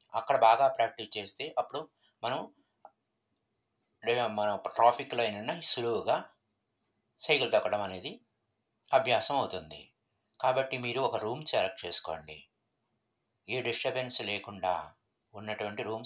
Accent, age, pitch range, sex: native, 60-79, 110-130 Hz, male